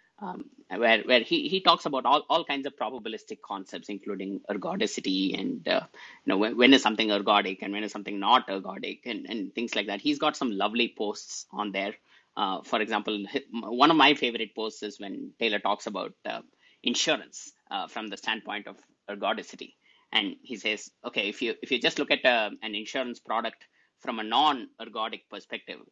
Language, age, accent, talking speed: English, 20-39, Indian, 190 wpm